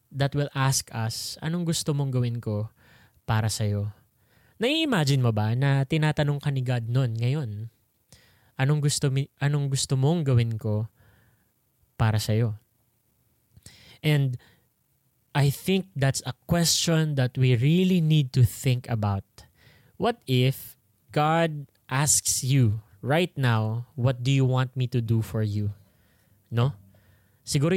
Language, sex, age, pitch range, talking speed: English, male, 20-39, 115-155 Hz, 130 wpm